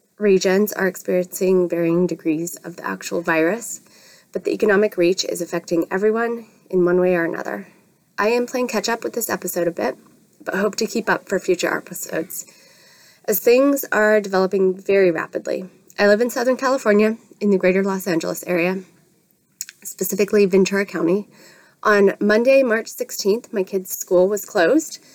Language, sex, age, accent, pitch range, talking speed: English, female, 20-39, American, 180-215 Hz, 160 wpm